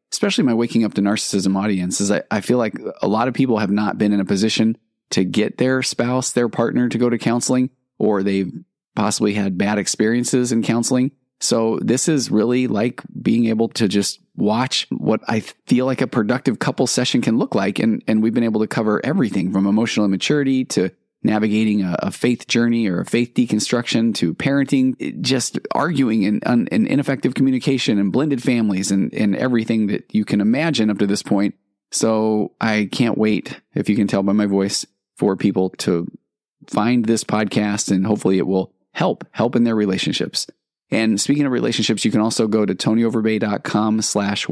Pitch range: 100-120 Hz